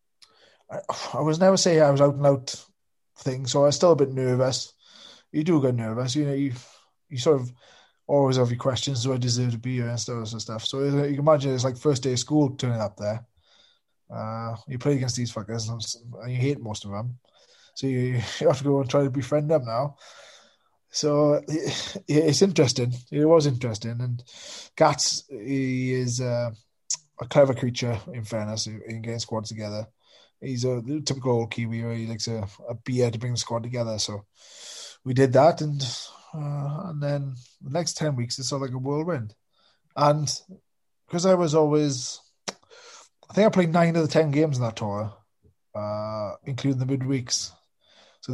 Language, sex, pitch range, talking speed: English, male, 120-145 Hz, 190 wpm